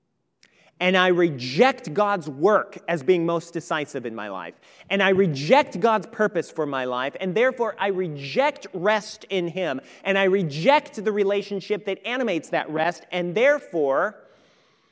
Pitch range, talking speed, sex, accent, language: 165-220 Hz, 155 wpm, male, American, English